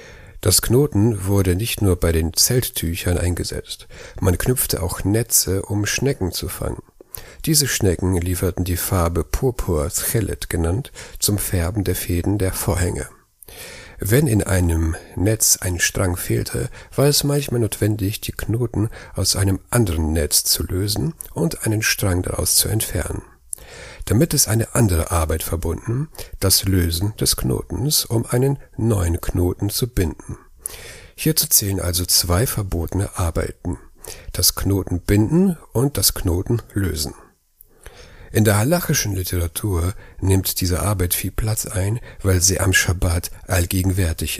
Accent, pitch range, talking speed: German, 90-110 Hz, 135 wpm